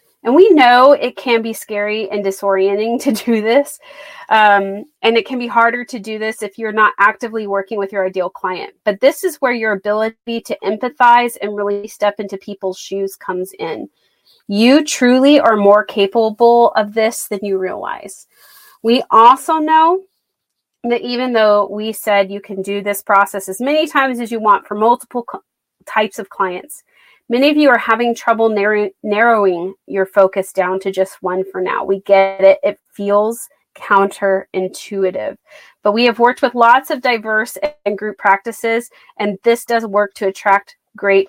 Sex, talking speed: female, 175 wpm